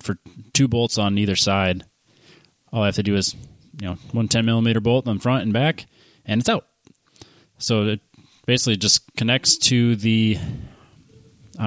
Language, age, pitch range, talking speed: English, 20-39, 95-115 Hz, 175 wpm